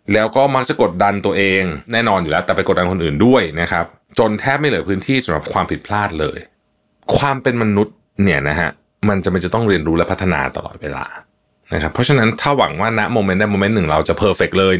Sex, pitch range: male, 85-130 Hz